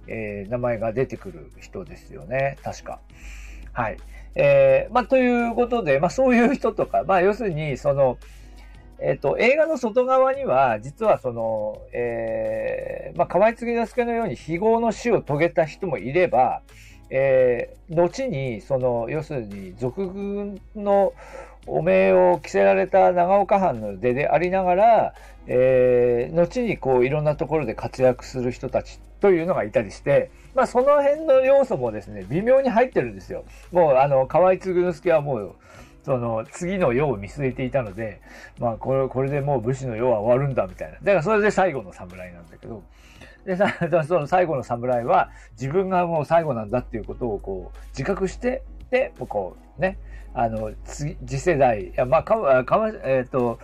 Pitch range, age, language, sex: 125-205 Hz, 50-69, Japanese, male